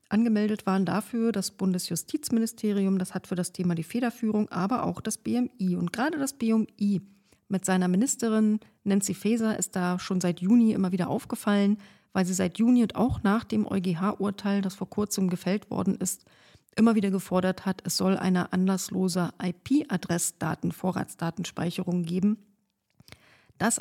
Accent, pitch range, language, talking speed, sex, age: German, 185-220 Hz, German, 155 wpm, female, 40-59